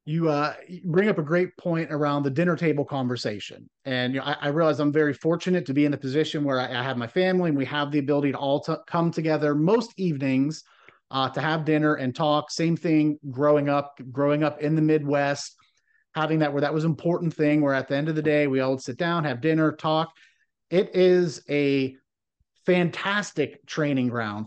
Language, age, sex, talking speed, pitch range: English, 30-49, male, 205 wpm, 140-165 Hz